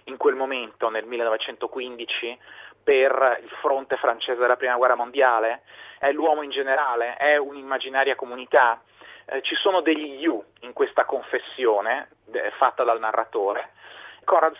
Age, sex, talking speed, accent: 30-49, male, 135 wpm, native